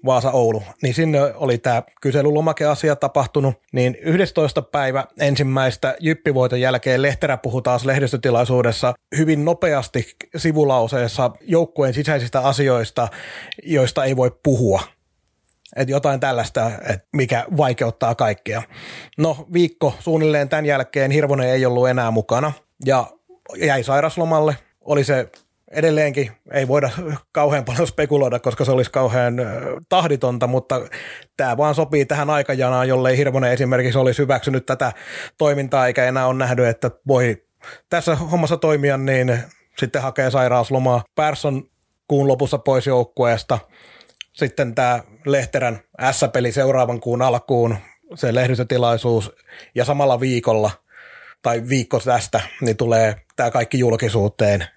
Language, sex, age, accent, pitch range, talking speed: Finnish, male, 30-49, native, 120-145 Hz, 120 wpm